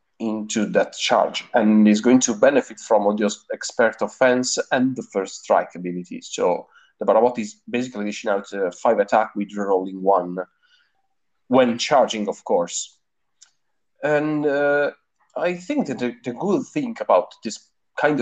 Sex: male